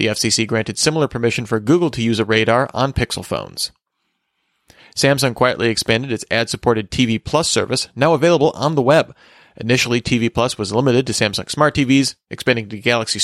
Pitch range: 115-140 Hz